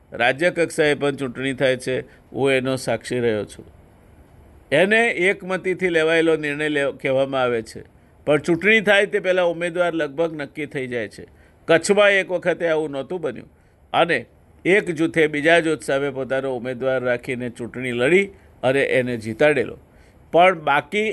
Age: 50-69